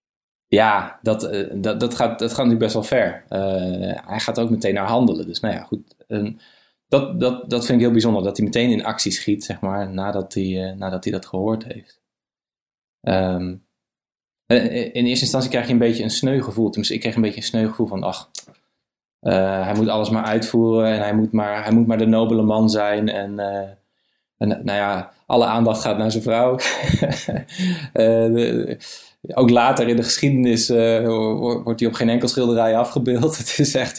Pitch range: 100-120 Hz